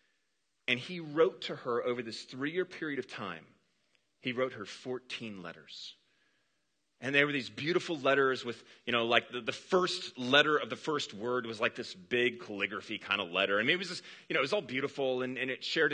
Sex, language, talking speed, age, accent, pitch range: male, English, 215 wpm, 30-49, American, 105-140 Hz